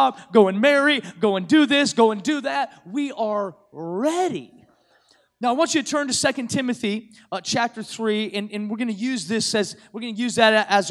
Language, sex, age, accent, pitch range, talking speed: English, male, 30-49, American, 215-265 Hz, 220 wpm